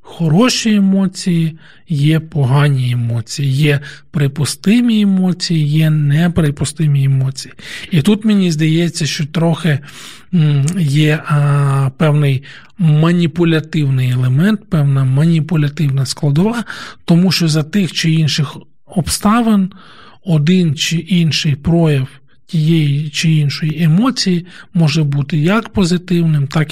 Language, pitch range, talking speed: Ukrainian, 150-185 Hz, 100 wpm